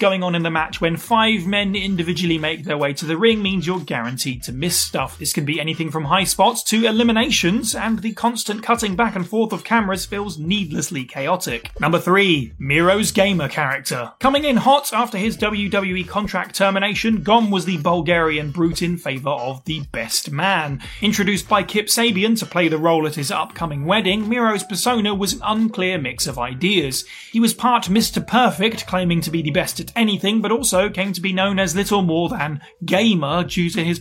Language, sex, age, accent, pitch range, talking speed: English, male, 30-49, British, 165-215 Hz, 200 wpm